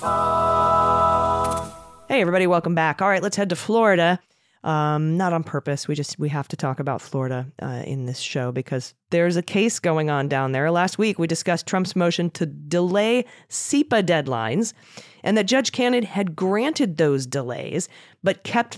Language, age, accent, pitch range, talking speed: English, 30-49, American, 135-175 Hz, 175 wpm